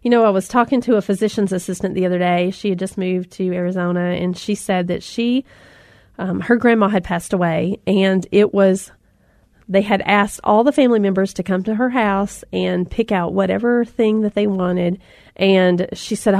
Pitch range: 180-215 Hz